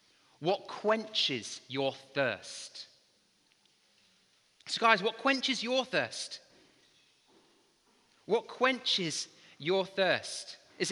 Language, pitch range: English, 160-230 Hz